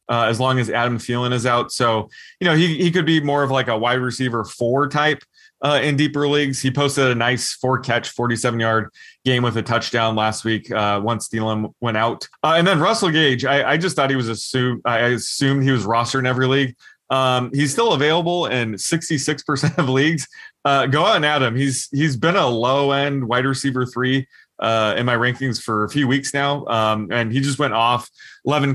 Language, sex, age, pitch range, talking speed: English, male, 20-39, 115-145 Hz, 220 wpm